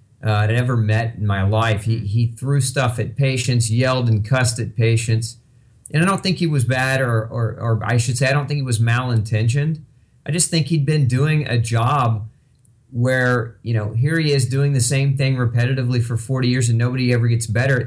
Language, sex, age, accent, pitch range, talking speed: English, male, 40-59, American, 115-135 Hz, 215 wpm